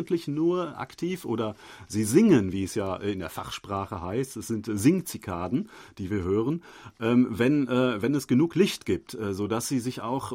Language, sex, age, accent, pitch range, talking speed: German, male, 40-59, German, 110-135 Hz, 160 wpm